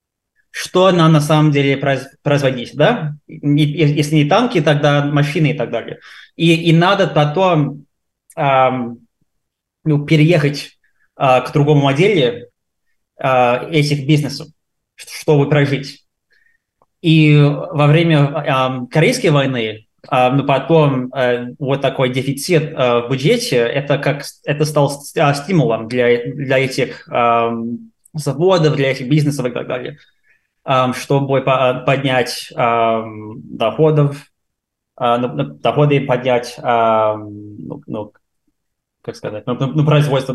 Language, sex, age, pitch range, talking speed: Russian, male, 20-39, 130-155 Hz, 105 wpm